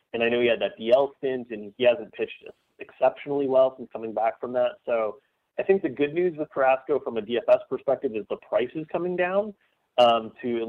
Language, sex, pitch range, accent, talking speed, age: English, male, 115-165 Hz, American, 225 wpm, 30-49